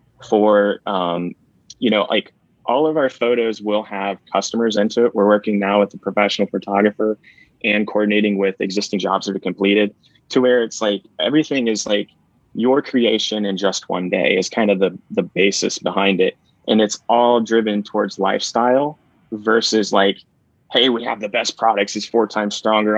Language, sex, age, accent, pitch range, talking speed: English, male, 20-39, American, 100-115 Hz, 180 wpm